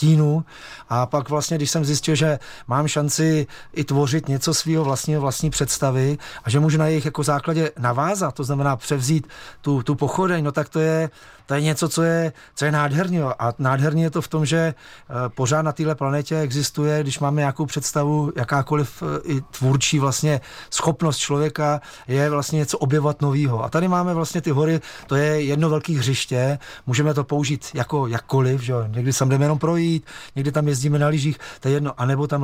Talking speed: 190 wpm